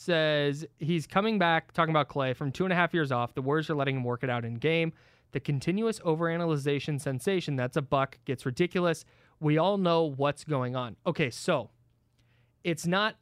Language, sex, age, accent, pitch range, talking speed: English, male, 20-39, American, 140-200 Hz, 190 wpm